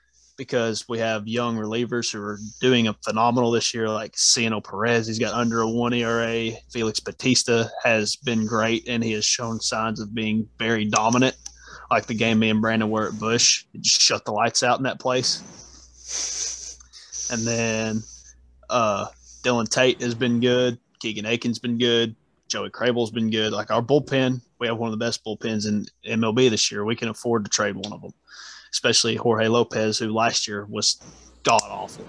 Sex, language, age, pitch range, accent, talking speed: male, English, 20-39, 110-120 Hz, American, 185 wpm